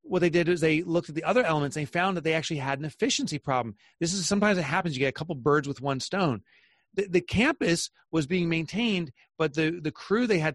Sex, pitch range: male, 140-180 Hz